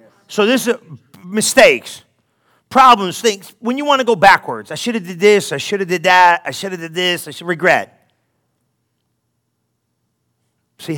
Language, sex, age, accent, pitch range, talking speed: English, male, 40-59, American, 120-170 Hz, 170 wpm